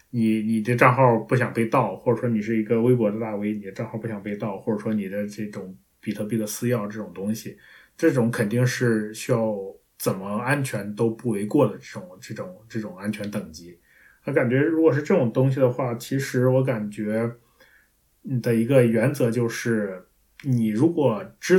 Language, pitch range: Chinese, 105-125 Hz